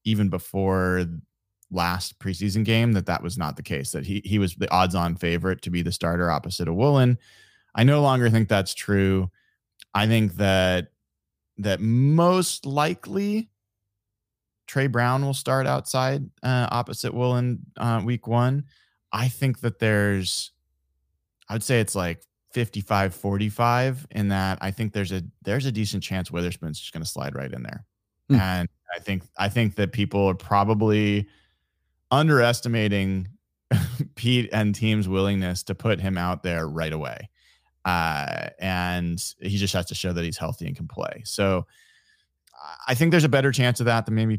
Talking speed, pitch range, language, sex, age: 165 wpm, 90-120 Hz, English, male, 20-39